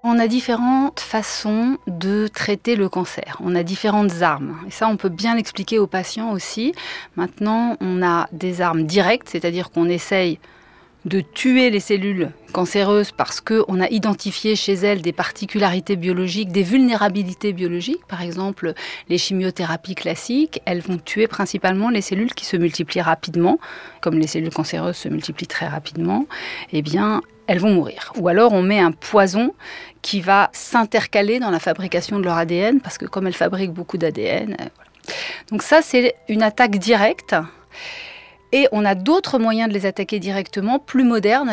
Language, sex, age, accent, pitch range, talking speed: French, female, 30-49, French, 180-225 Hz, 165 wpm